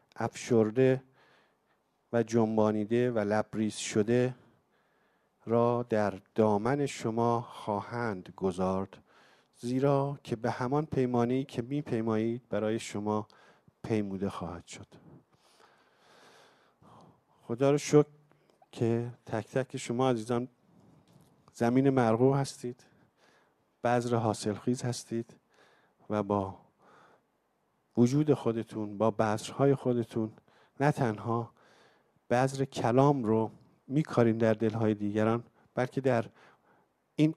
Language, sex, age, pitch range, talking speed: English, male, 50-69, 110-135 Hz, 95 wpm